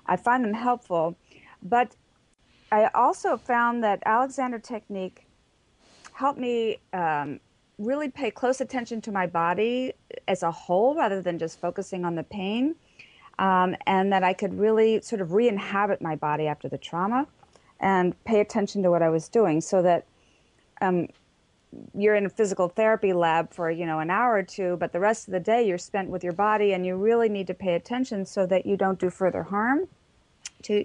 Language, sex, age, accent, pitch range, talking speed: English, female, 40-59, American, 180-225 Hz, 185 wpm